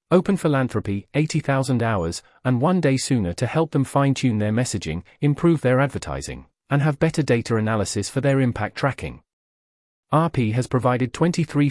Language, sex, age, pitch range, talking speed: English, male, 30-49, 105-135 Hz, 155 wpm